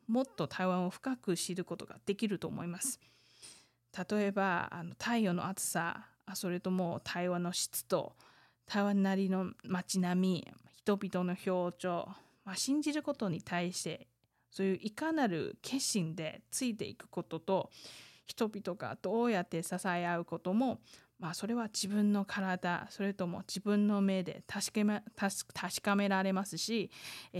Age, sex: 20-39, female